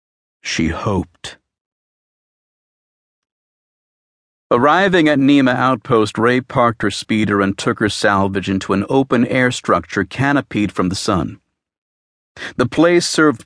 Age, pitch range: 50-69, 95-130 Hz